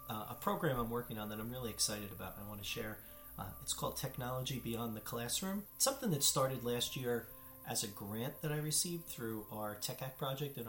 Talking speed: 230 wpm